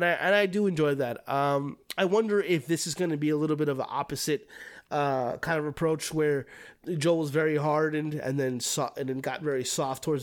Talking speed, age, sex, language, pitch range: 240 wpm, 20-39, male, English, 135-165 Hz